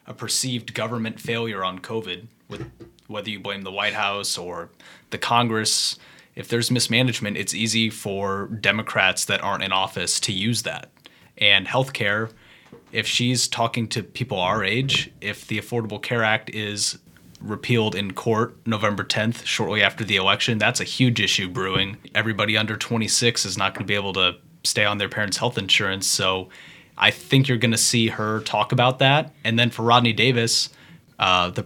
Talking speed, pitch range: 175 wpm, 100-120 Hz